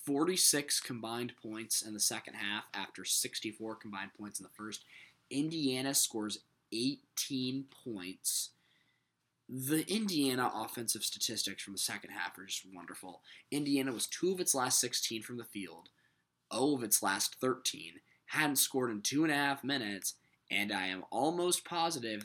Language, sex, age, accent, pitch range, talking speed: English, male, 20-39, American, 105-135 Hz, 155 wpm